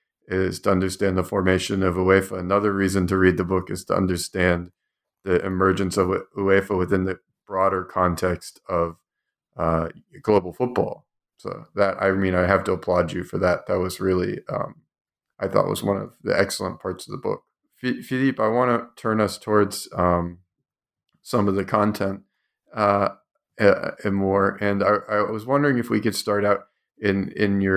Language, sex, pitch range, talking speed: English, male, 90-105 Hz, 175 wpm